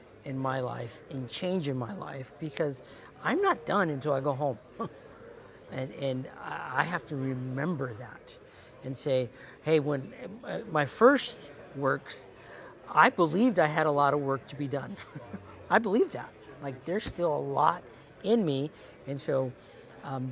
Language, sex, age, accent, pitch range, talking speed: English, male, 50-69, American, 140-190 Hz, 160 wpm